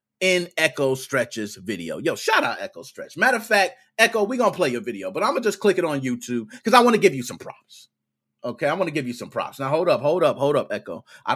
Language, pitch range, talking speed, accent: English, 120-195 Hz, 270 wpm, American